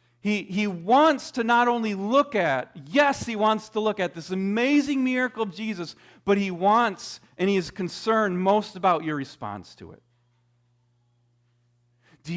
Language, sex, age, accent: English, male, 40-59, American